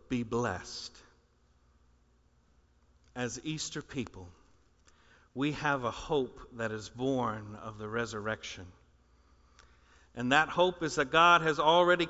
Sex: male